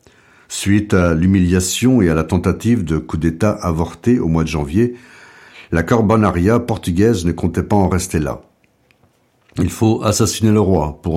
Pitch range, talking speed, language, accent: 85-105 Hz, 160 wpm, French, French